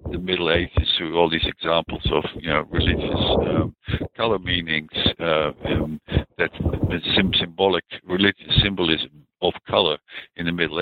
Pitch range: 80-95 Hz